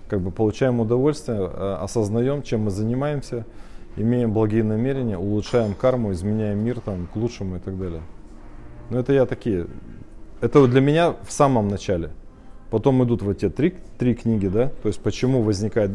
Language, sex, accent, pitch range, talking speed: Russian, male, native, 105-130 Hz, 165 wpm